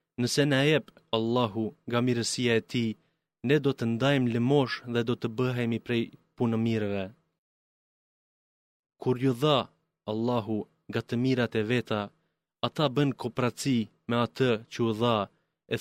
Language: Greek